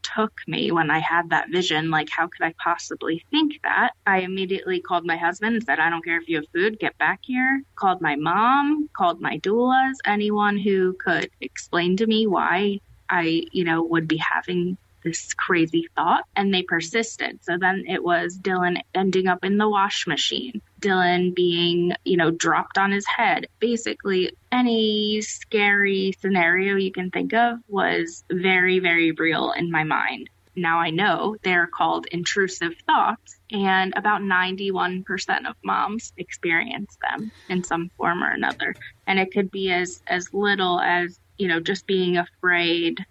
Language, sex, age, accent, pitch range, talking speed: English, female, 20-39, American, 165-195 Hz, 170 wpm